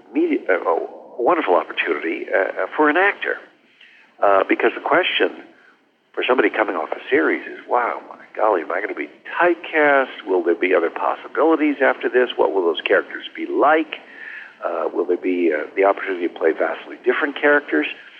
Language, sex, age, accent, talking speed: English, male, 60-79, American, 175 wpm